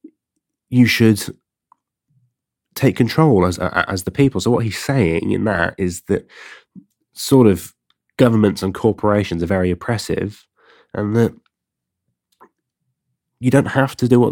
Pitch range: 95-115 Hz